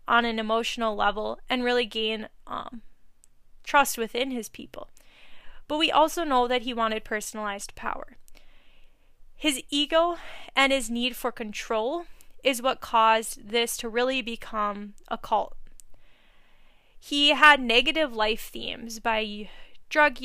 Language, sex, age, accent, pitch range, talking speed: English, female, 20-39, American, 220-275 Hz, 130 wpm